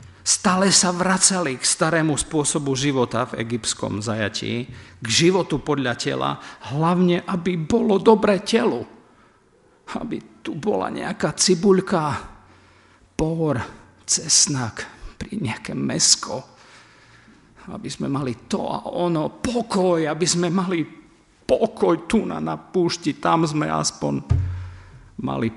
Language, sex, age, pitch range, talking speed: Slovak, male, 50-69, 110-150 Hz, 115 wpm